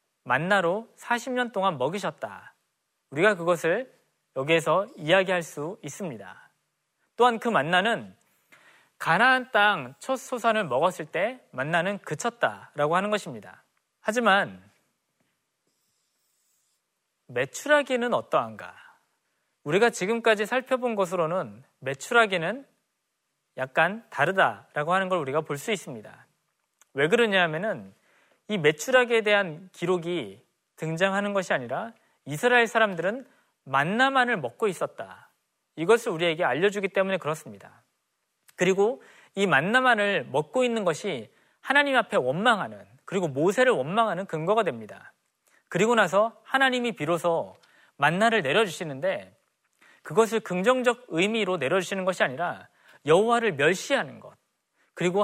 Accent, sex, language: native, male, Korean